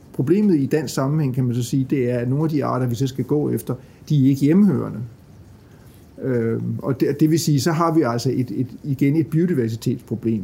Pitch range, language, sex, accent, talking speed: 125-155 Hz, Danish, male, native, 225 wpm